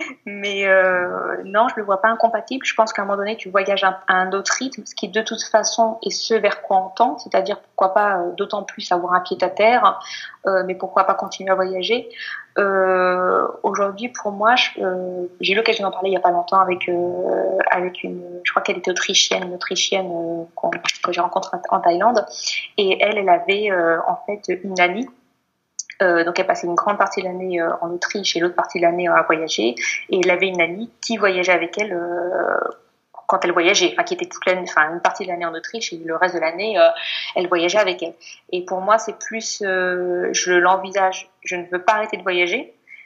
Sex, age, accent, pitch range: female, 20-39, French, 180-215 Hz